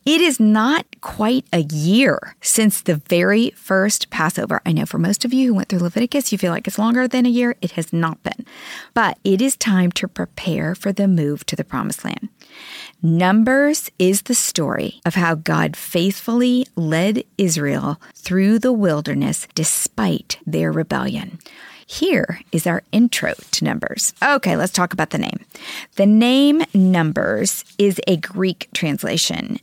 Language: English